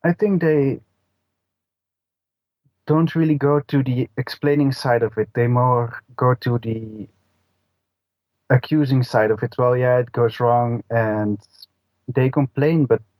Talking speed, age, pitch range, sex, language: 135 wpm, 30-49, 100-130 Hz, male, English